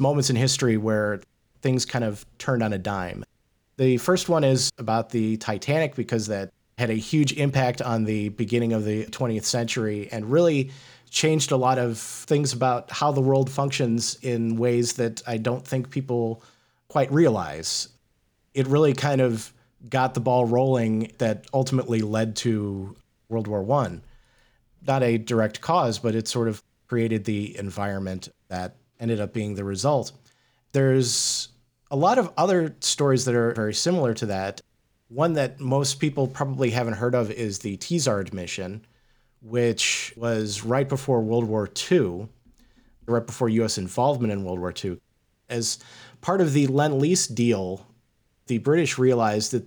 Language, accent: English, American